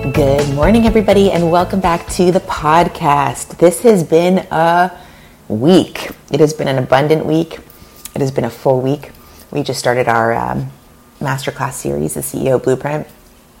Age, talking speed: 30-49, 160 wpm